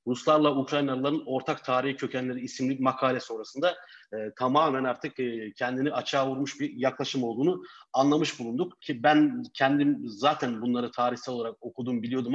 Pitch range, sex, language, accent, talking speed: 125-150 Hz, male, Turkish, native, 140 wpm